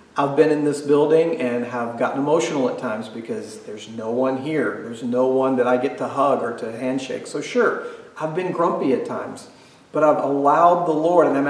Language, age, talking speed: English, 40-59, 215 wpm